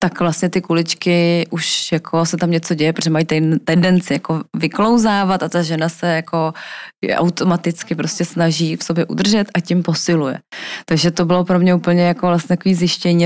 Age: 20-39